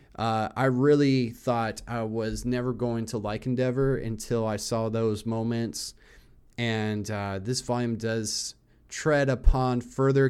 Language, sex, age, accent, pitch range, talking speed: English, male, 30-49, American, 110-130 Hz, 140 wpm